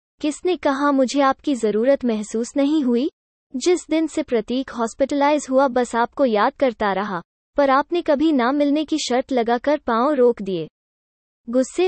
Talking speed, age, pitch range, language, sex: 155 wpm, 20-39, 230-300 Hz, Hindi, female